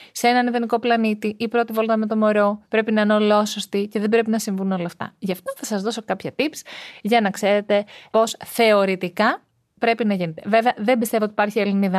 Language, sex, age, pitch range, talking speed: Greek, female, 30-49, 185-245 Hz, 210 wpm